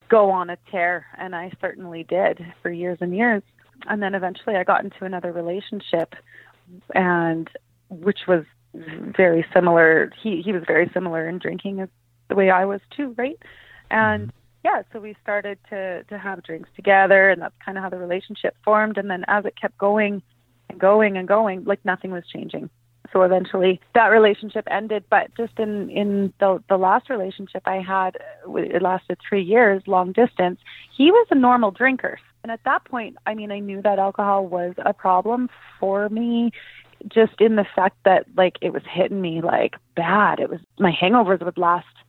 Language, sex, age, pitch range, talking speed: English, female, 30-49, 175-205 Hz, 185 wpm